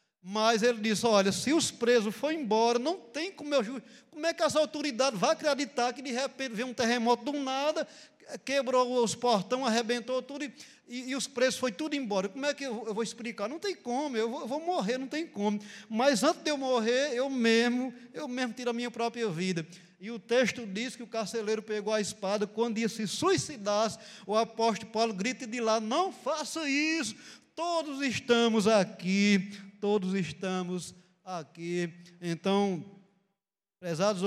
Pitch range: 185-250 Hz